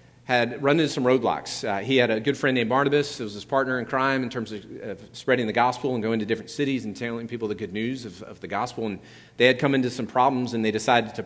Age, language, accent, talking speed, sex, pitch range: 40-59, English, American, 275 wpm, male, 110-135 Hz